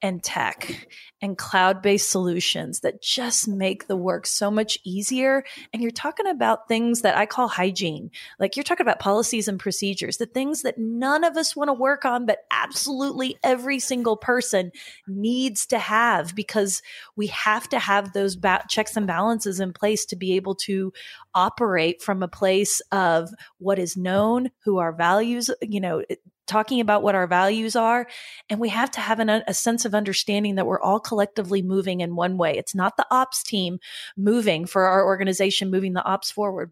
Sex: female